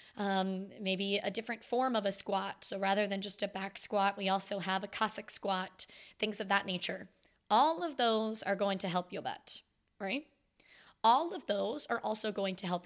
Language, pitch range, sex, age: English, 190-230 Hz, female, 20-39